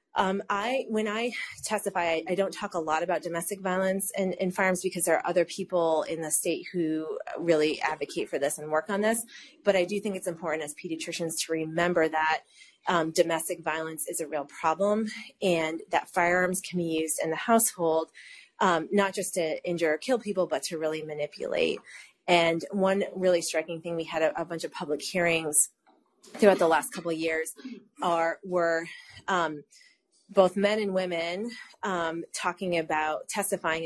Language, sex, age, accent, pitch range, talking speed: English, female, 30-49, American, 160-195 Hz, 185 wpm